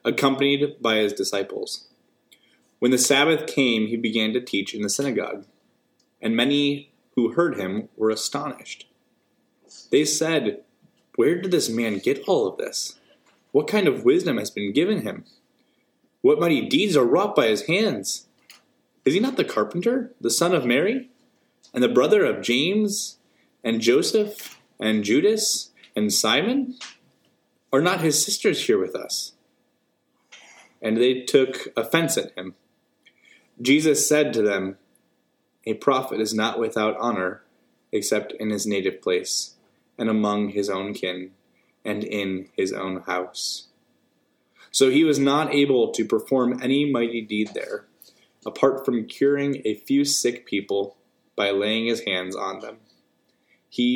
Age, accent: 20-39, American